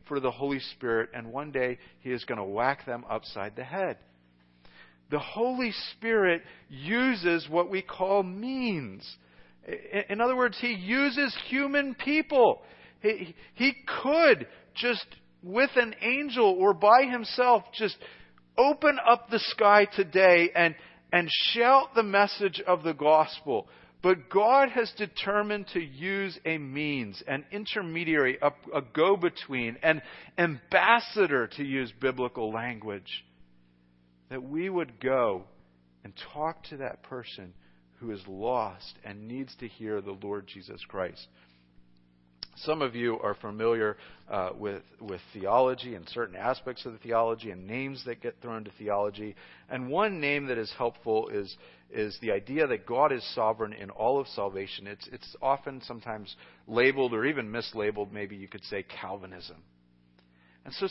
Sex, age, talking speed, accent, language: male, 50-69, 145 wpm, American, English